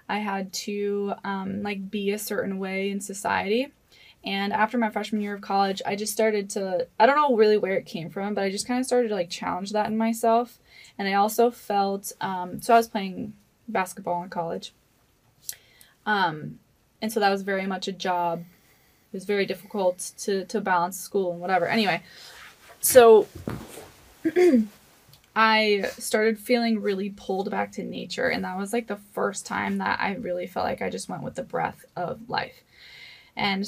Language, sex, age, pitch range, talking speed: English, female, 20-39, 180-220 Hz, 185 wpm